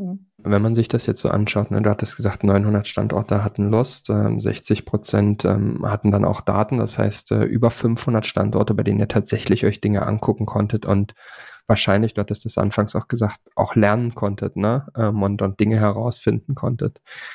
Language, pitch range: German, 105-120 Hz